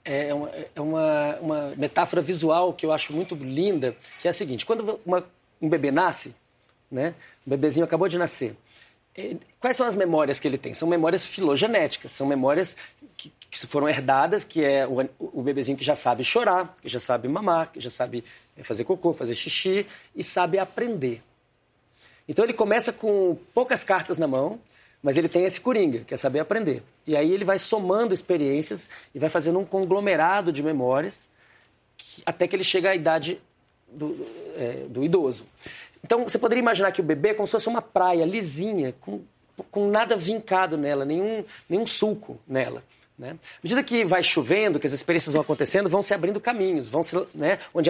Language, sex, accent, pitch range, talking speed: Portuguese, male, Brazilian, 150-205 Hz, 185 wpm